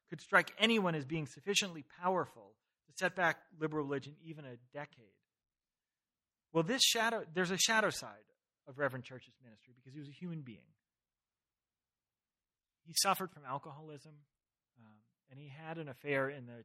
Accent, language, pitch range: American, English, 125-165 Hz